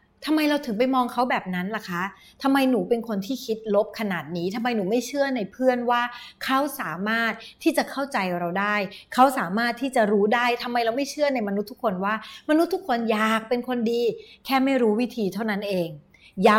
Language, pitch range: Thai, 195-260 Hz